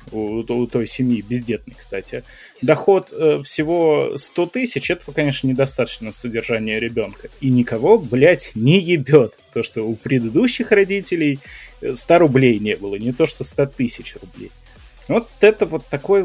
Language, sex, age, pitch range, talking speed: Russian, male, 20-39, 120-155 Hz, 150 wpm